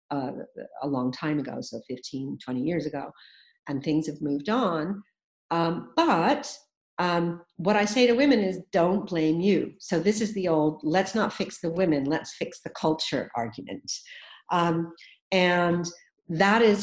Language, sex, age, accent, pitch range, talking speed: English, female, 50-69, American, 145-190 Hz, 165 wpm